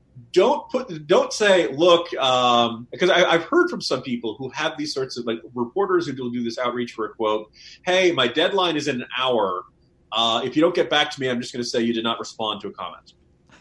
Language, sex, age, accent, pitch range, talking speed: English, male, 30-49, American, 125-190 Hz, 240 wpm